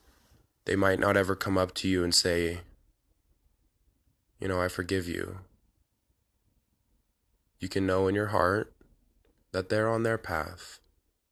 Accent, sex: American, male